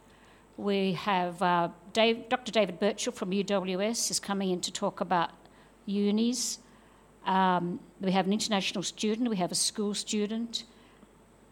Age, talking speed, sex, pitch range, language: 60-79, 140 wpm, female, 175-210 Hz, English